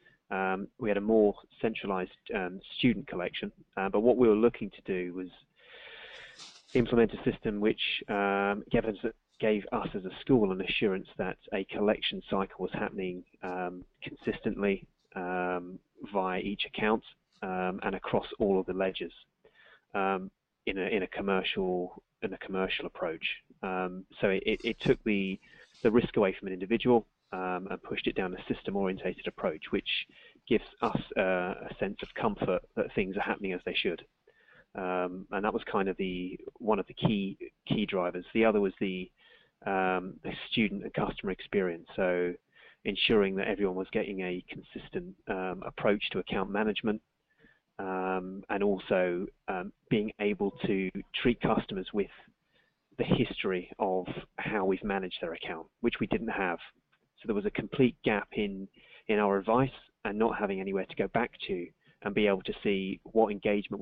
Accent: British